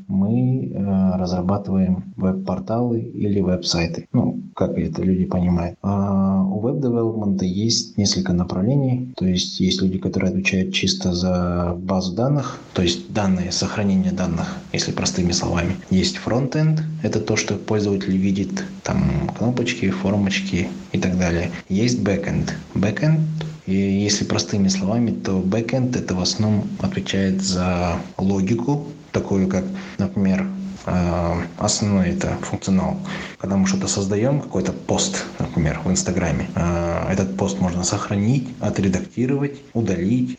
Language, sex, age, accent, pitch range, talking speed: Russian, male, 20-39, native, 95-120 Hz, 125 wpm